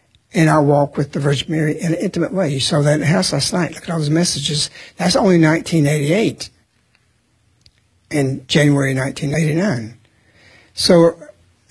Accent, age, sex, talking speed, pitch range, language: American, 60-79, male, 155 wpm, 140-170 Hz, English